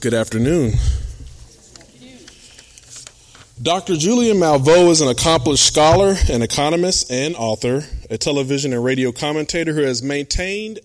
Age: 20-39